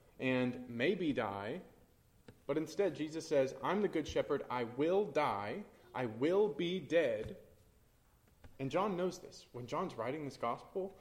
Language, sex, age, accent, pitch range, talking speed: English, male, 20-39, American, 125-160 Hz, 145 wpm